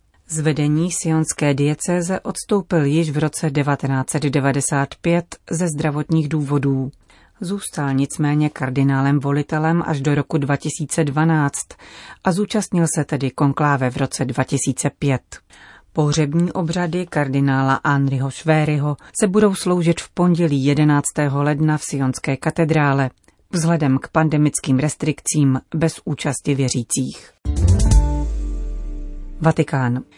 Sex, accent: female, native